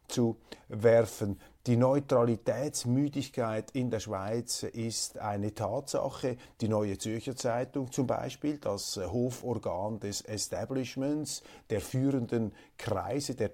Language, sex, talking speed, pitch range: German, male, 105 wpm, 105-130 Hz